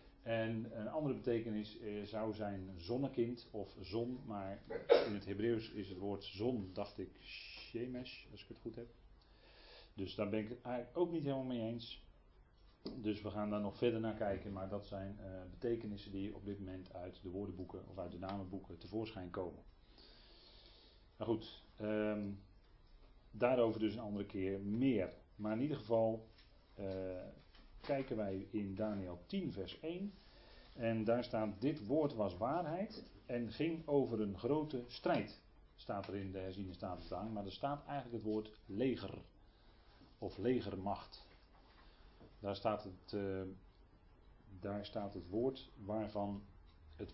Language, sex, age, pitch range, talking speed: Dutch, male, 40-59, 95-115 Hz, 155 wpm